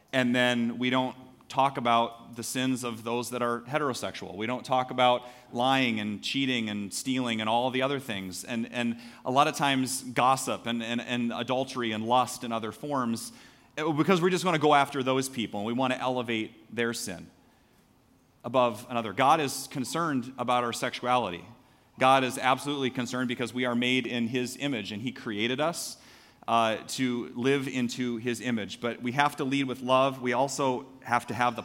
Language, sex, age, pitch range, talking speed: English, male, 30-49, 115-135 Hz, 190 wpm